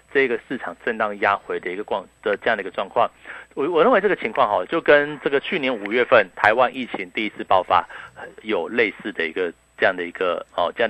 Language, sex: Chinese, male